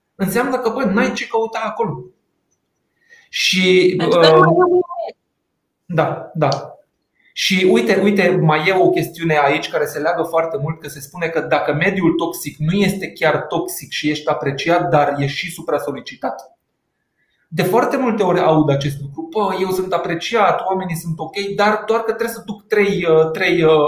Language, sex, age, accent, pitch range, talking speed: Romanian, male, 30-49, native, 150-205 Hz, 160 wpm